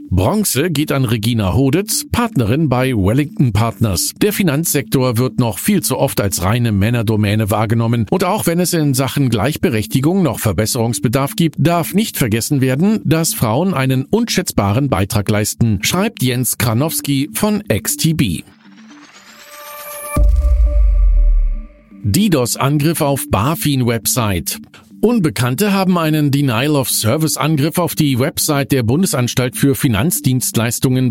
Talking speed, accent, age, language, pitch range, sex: 115 wpm, German, 50-69, German, 115-160 Hz, male